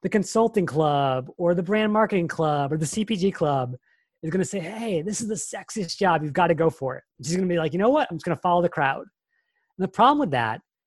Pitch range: 150-210 Hz